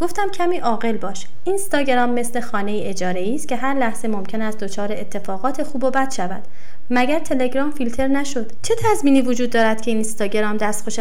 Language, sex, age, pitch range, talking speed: Persian, female, 30-49, 215-280 Hz, 185 wpm